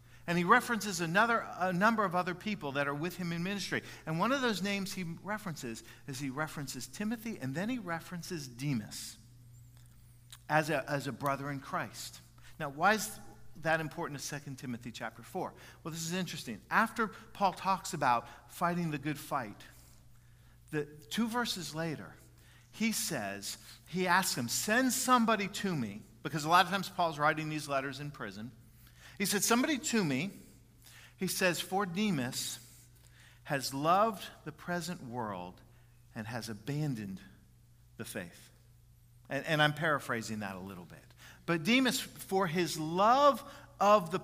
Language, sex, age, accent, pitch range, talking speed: English, male, 50-69, American, 120-200 Hz, 160 wpm